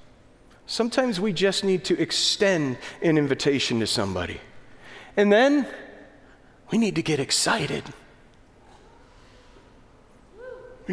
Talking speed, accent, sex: 100 wpm, American, male